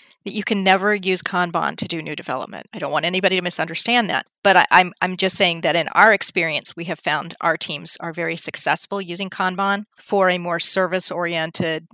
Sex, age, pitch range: female, 40-59, 170-195 Hz